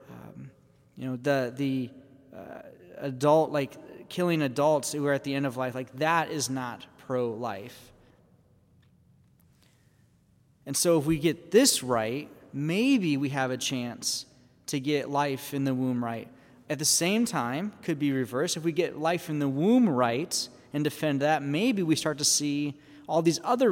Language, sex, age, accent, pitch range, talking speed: English, male, 30-49, American, 130-160 Hz, 170 wpm